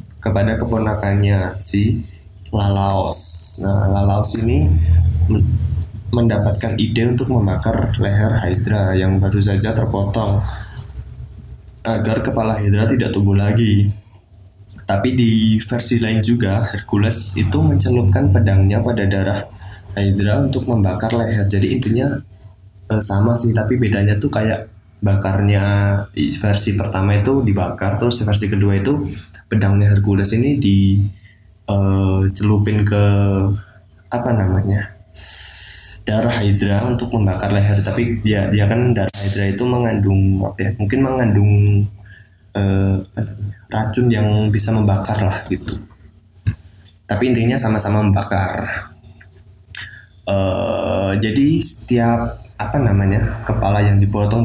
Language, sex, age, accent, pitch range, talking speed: Indonesian, male, 20-39, native, 95-110 Hz, 110 wpm